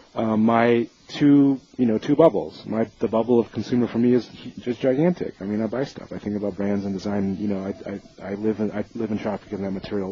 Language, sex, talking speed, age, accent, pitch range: English, male, 250 wpm, 30-49, American, 100-115 Hz